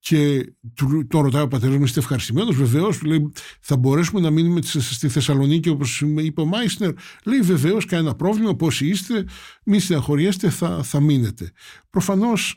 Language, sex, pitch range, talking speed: Greek, male, 140-185 Hz, 150 wpm